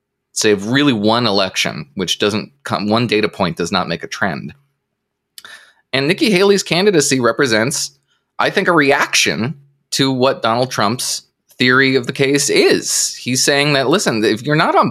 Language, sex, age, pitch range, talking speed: English, male, 20-39, 105-160 Hz, 165 wpm